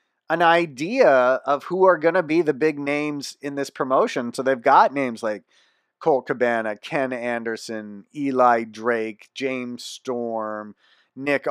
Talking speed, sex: 145 wpm, male